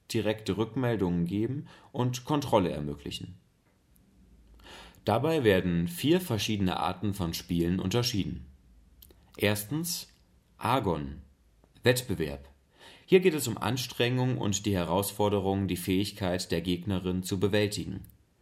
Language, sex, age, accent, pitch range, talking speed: German, male, 30-49, German, 90-125 Hz, 100 wpm